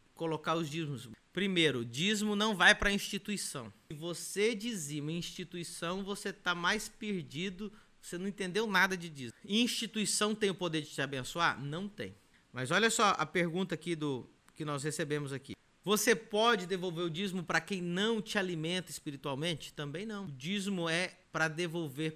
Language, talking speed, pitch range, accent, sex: Portuguese, 170 wpm, 150-195 Hz, Brazilian, male